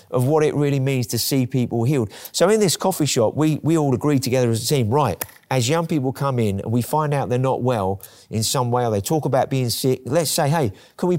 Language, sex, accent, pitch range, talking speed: English, male, British, 120-155 Hz, 265 wpm